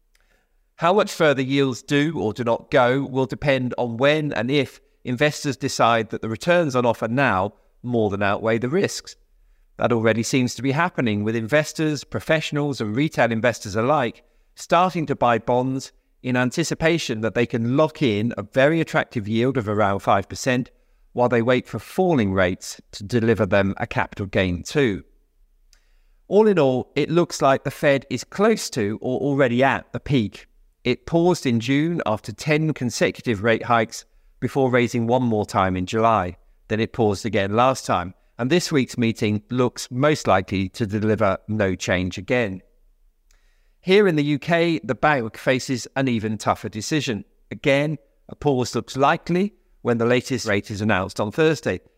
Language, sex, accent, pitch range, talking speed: English, male, British, 110-140 Hz, 170 wpm